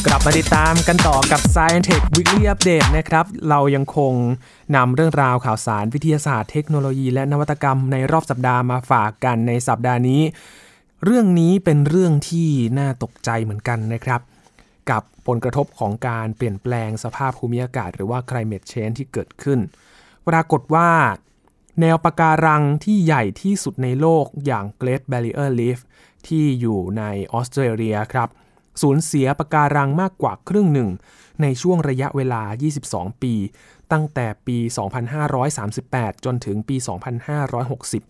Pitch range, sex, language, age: 120-155 Hz, male, Thai, 20-39